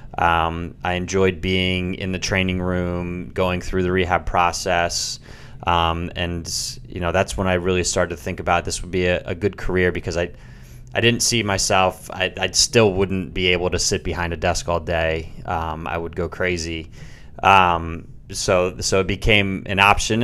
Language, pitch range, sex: English, 90-100 Hz, male